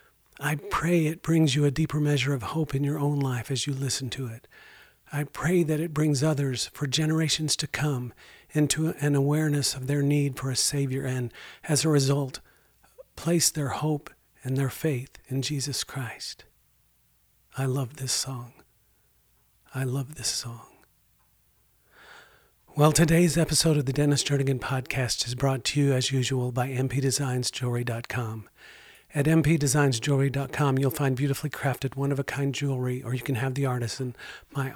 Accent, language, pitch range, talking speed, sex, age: American, English, 130-145 Hz, 155 wpm, male, 50-69